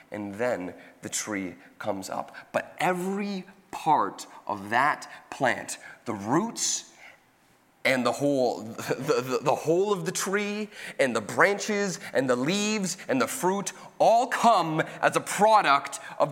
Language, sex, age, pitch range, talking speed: English, male, 30-49, 155-245 Hz, 145 wpm